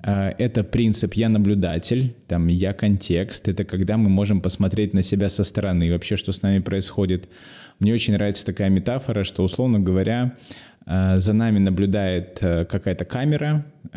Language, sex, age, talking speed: Russian, male, 20-39, 150 wpm